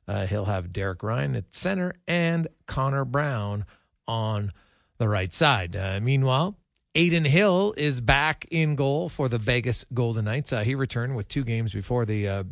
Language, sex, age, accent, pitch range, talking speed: English, male, 40-59, American, 100-135 Hz, 175 wpm